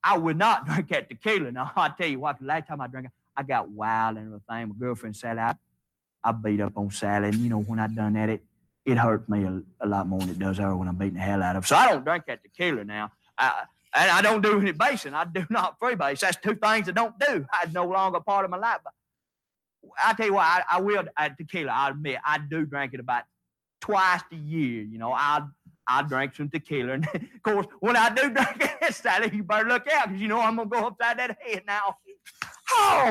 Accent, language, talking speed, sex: American, English, 255 wpm, male